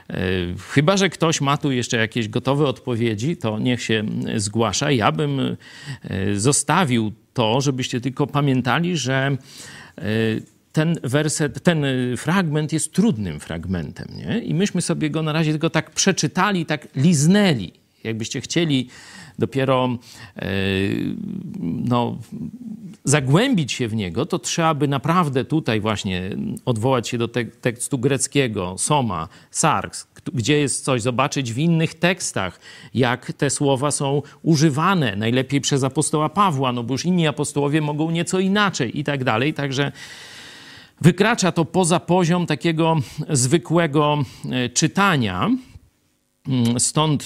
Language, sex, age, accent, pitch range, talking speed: Polish, male, 50-69, native, 120-165 Hz, 130 wpm